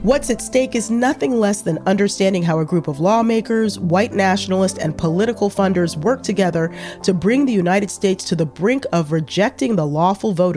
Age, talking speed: 40-59, 185 wpm